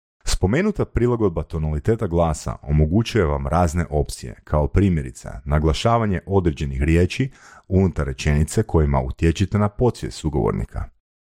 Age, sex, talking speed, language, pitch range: 40-59, male, 105 wpm, Croatian, 75-105 Hz